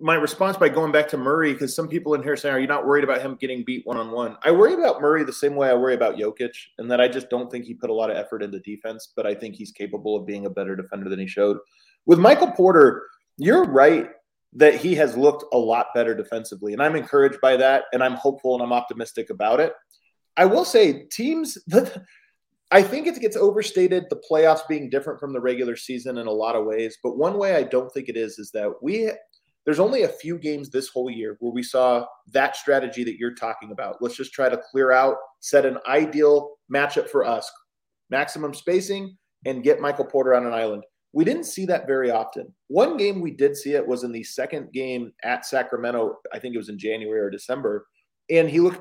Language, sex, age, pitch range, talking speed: English, male, 20-39, 120-160 Hz, 230 wpm